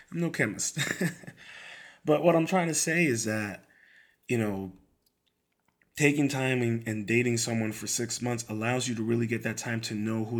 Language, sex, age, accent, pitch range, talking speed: English, male, 30-49, American, 110-135 Hz, 185 wpm